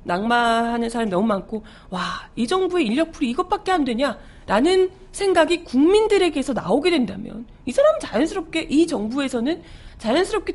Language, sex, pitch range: Korean, female, 210-320 Hz